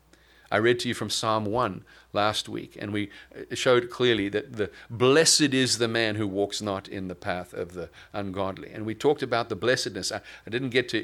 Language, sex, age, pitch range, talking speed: English, male, 40-59, 100-135 Hz, 205 wpm